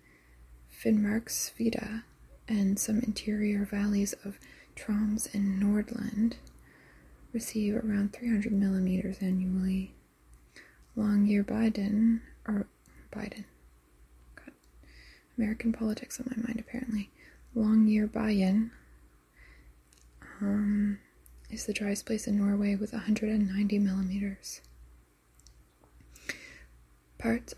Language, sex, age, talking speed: English, female, 20-39, 80 wpm